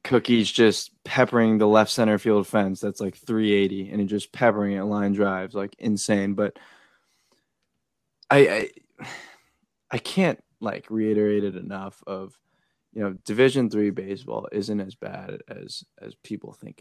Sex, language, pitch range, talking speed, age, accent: male, English, 100-110 Hz, 145 wpm, 20-39, American